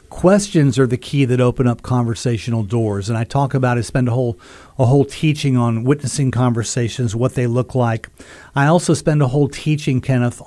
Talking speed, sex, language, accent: 195 wpm, male, English, American